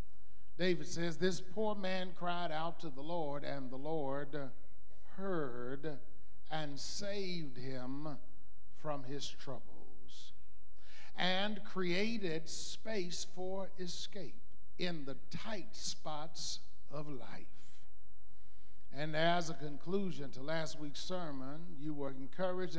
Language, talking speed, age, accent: English, 110 wpm, 60-79, American